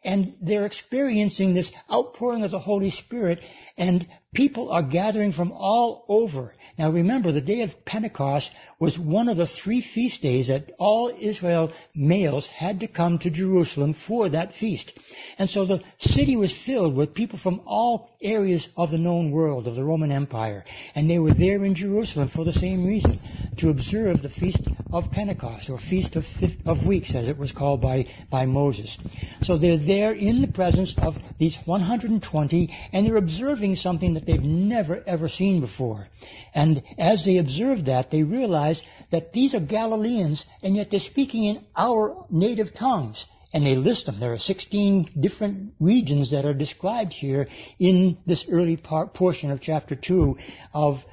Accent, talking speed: American, 175 wpm